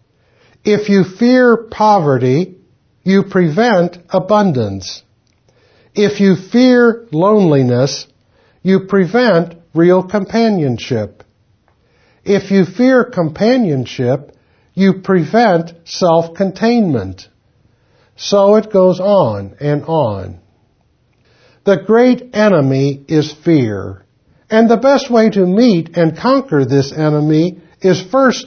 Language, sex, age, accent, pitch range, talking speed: English, male, 60-79, American, 130-205 Hz, 95 wpm